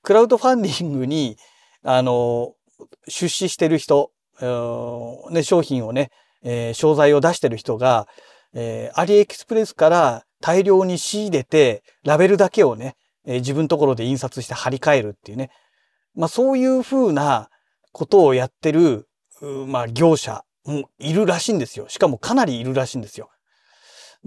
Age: 40-59